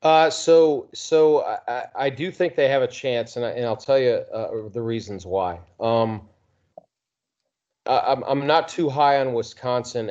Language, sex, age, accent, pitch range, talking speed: English, male, 40-59, American, 115-140 Hz, 170 wpm